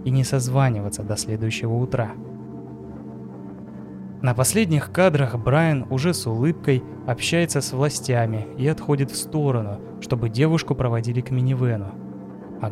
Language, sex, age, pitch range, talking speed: Russian, male, 20-39, 110-140 Hz, 125 wpm